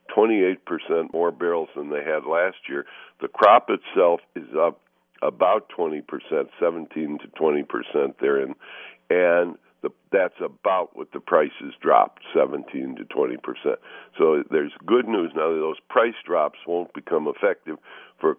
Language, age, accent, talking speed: English, 60-79, American, 155 wpm